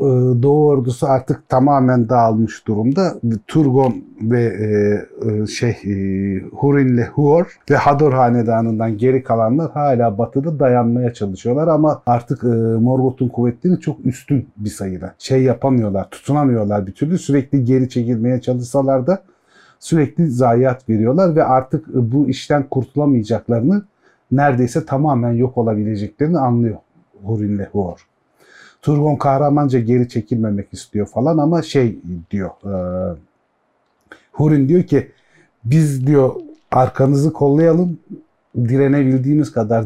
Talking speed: 115 wpm